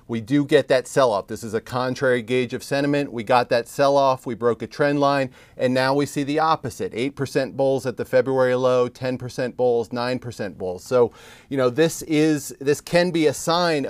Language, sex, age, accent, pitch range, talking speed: English, male, 40-59, American, 120-150 Hz, 205 wpm